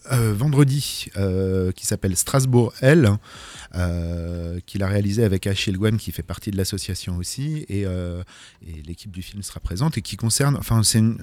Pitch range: 100-145 Hz